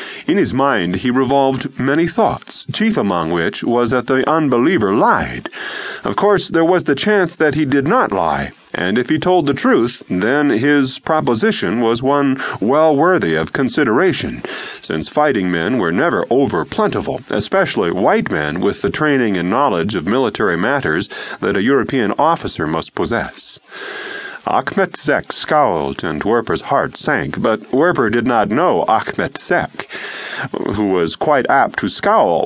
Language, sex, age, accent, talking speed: English, male, 40-59, American, 155 wpm